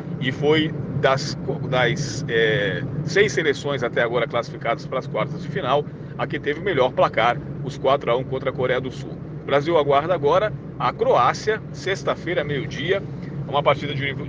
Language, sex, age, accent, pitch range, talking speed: Portuguese, male, 40-59, Brazilian, 135-155 Hz, 180 wpm